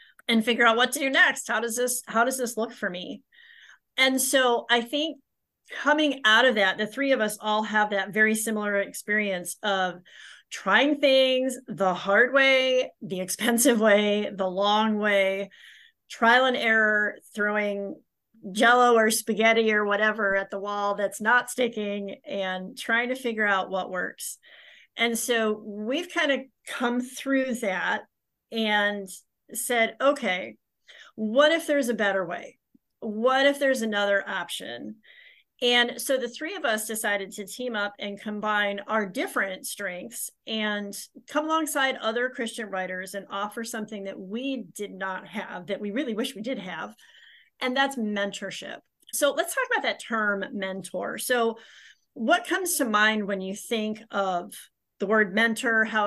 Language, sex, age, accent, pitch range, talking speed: English, female, 40-59, American, 200-255 Hz, 160 wpm